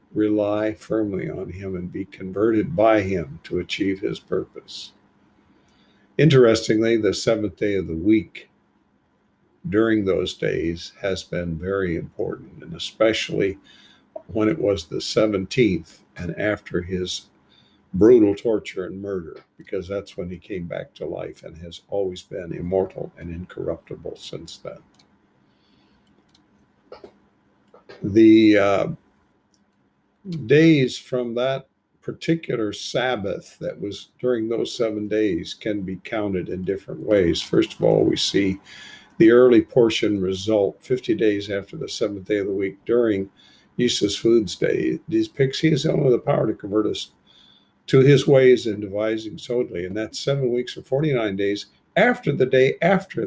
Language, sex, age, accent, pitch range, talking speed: English, male, 50-69, American, 95-125 Hz, 140 wpm